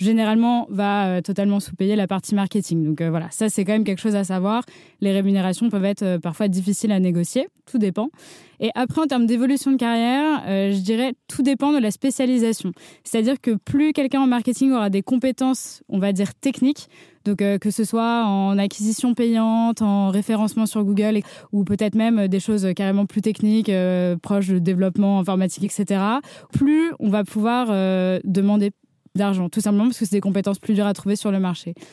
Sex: female